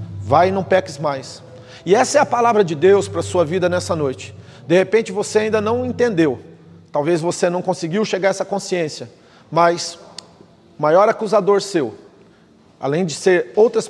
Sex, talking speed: male, 175 wpm